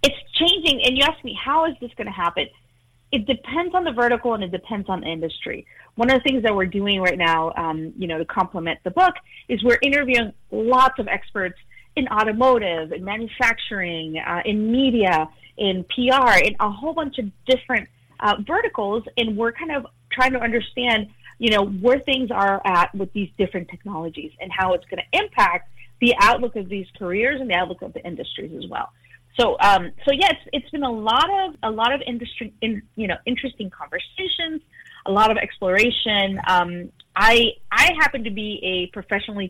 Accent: American